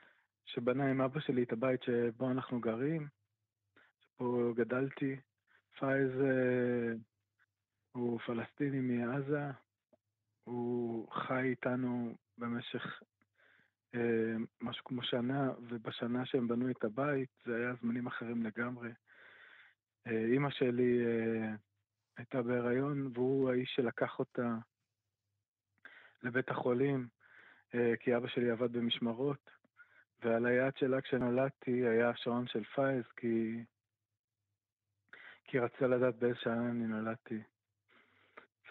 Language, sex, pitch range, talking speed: Hebrew, male, 115-130 Hz, 105 wpm